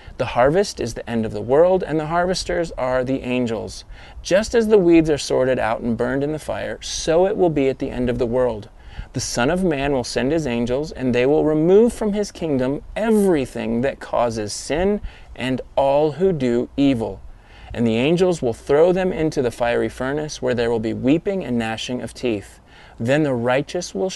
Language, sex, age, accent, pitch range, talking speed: English, male, 30-49, American, 120-165 Hz, 205 wpm